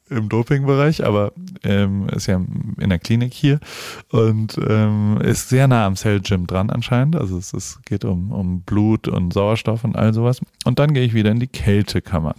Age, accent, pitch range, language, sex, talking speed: 30-49, German, 100-120 Hz, German, male, 195 wpm